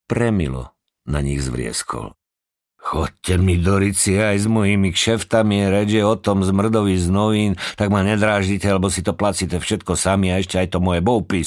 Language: Slovak